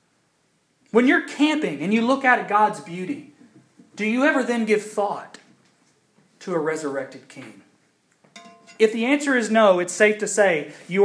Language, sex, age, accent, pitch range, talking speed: English, male, 30-49, American, 150-215 Hz, 165 wpm